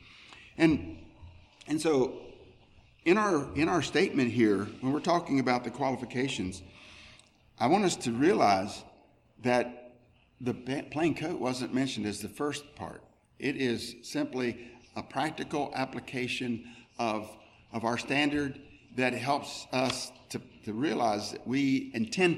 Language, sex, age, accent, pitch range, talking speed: English, male, 50-69, American, 110-140 Hz, 130 wpm